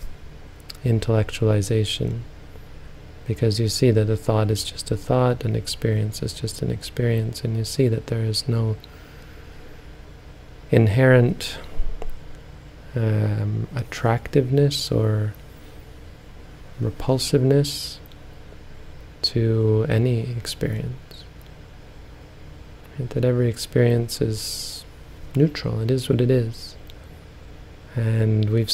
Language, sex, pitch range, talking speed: English, male, 80-115 Hz, 90 wpm